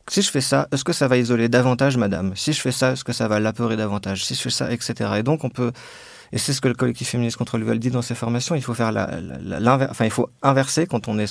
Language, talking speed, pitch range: French, 300 wpm, 115-140 Hz